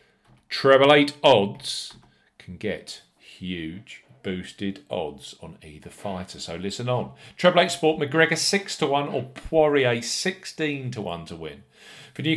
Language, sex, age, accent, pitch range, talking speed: English, male, 40-59, British, 95-125 Hz, 145 wpm